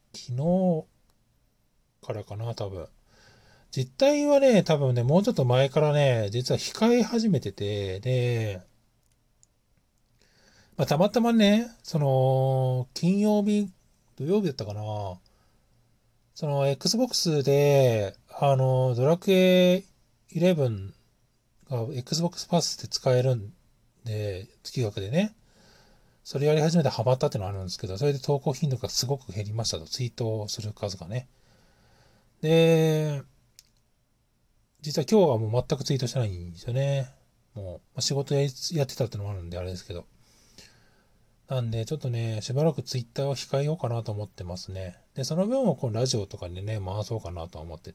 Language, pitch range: Japanese, 110-155 Hz